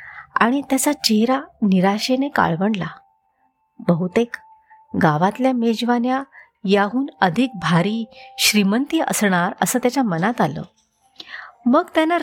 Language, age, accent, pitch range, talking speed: Marathi, 30-49, native, 180-265 Hz, 95 wpm